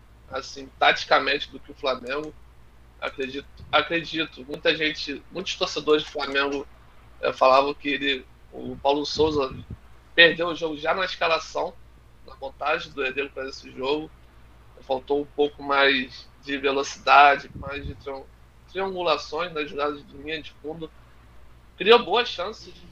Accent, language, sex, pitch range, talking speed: Brazilian, Portuguese, male, 135-165 Hz, 135 wpm